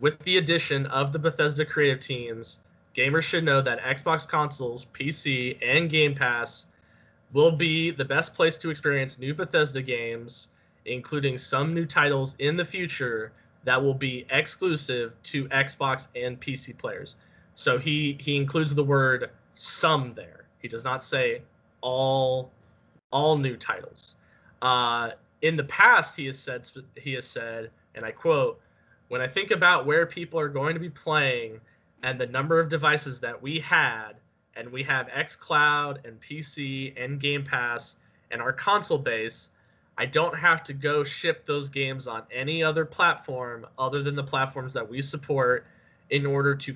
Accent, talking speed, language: American, 165 wpm, English